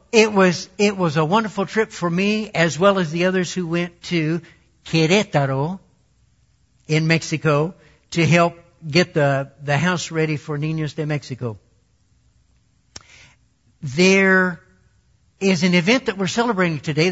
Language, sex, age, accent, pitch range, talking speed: English, male, 60-79, American, 145-190 Hz, 135 wpm